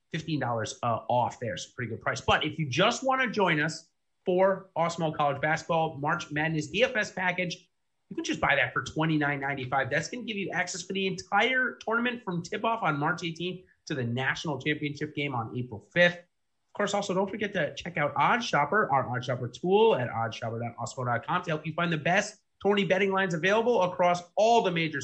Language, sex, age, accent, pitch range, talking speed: English, male, 30-49, American, 140-200 Hz, 205 wpm